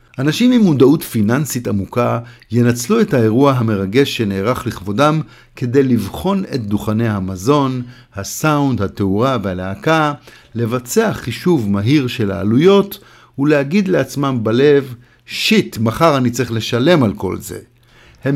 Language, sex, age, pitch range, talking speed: Hebrew, male, 50-69, 115-155 Hz, 120 wpm